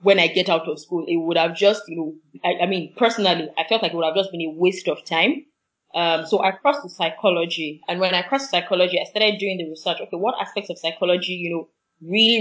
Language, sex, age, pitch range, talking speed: English, female, 20-39, 175-230 Hz, 250 wpm